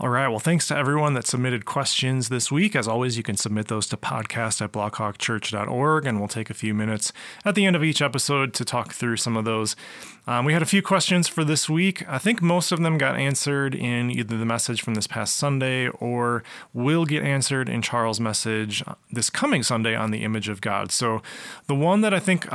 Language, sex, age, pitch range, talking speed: English, male, 30-49, 110-145 Hz, 225 wpm